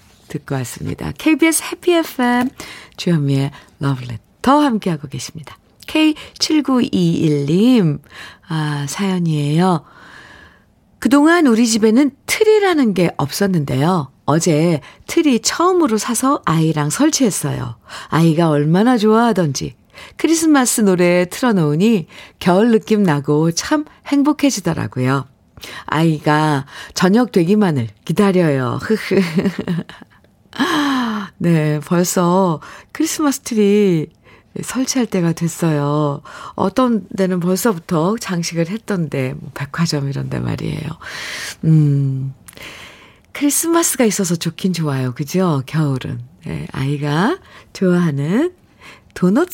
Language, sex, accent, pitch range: Korean, female, native, 150-240 Hz